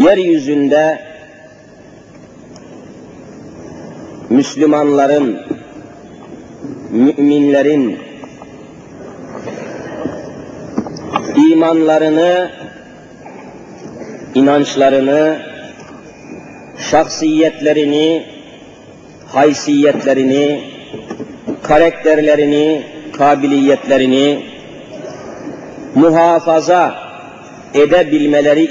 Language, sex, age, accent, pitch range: Turkish, male, 50-69, native, 145-180 Hz